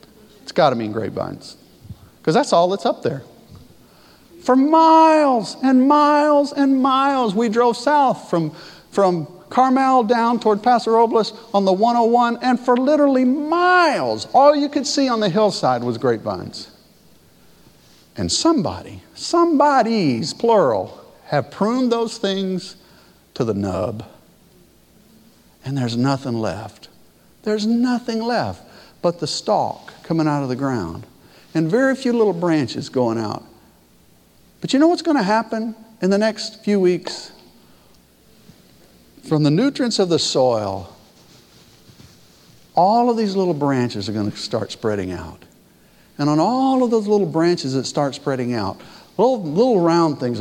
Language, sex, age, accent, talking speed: English, male, 50-69, American, 140 wpm